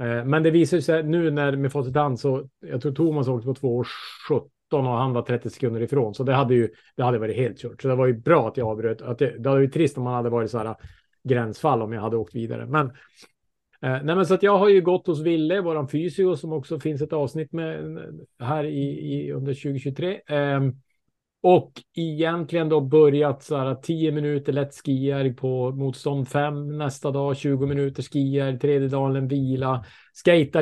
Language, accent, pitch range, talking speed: Swedish, Norwegian, 125-155 Hz, 205 wpm